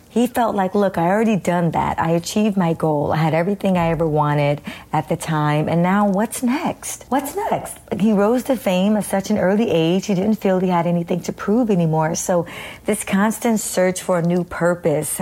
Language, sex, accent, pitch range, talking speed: English, female, American, 165-200 Hz, 210 wpm